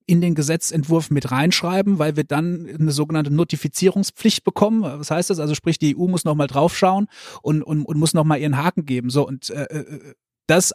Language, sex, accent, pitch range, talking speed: English, male, German, 145-175 Hz, 200 wpm